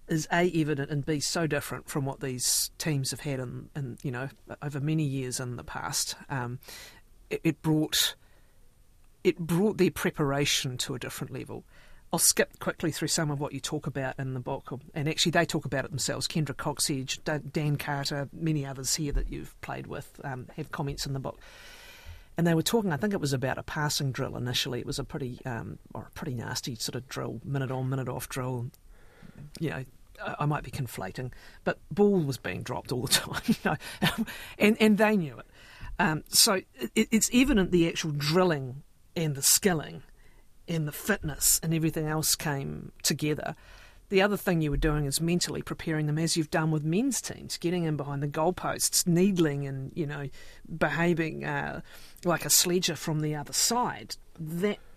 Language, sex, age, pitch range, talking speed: English, female, 50-69, 135-170 Hz, 200 wpm